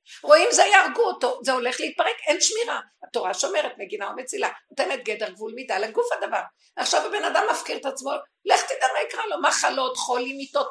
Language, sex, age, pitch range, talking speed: Hebrew, female, 50-69, 215-355 Hz, 185 wpm